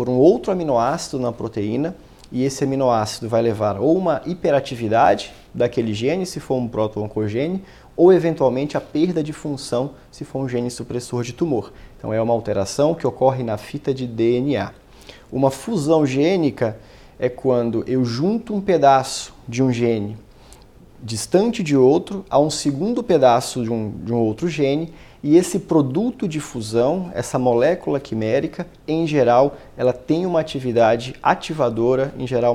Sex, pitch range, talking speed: male, 115-145 Hz, 155 wpm